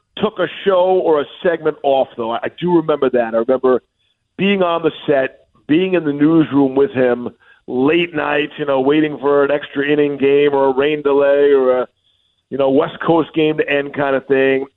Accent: American